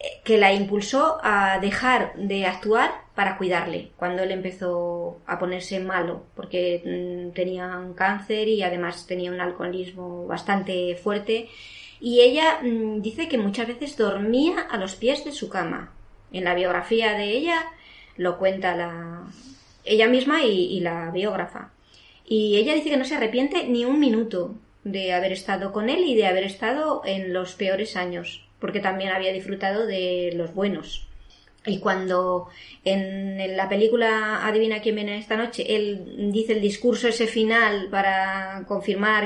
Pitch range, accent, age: 185-225 Hz, Spanish, 20-39